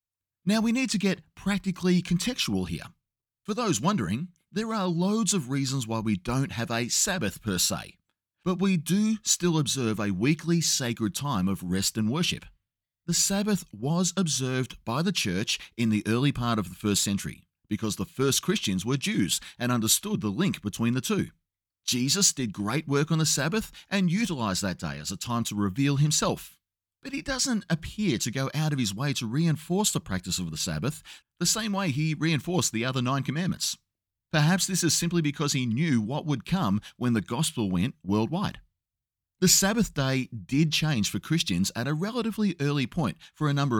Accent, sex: Australian, male